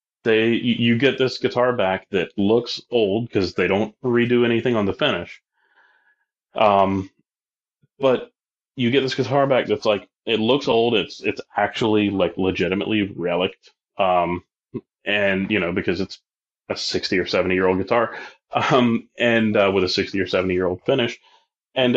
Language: English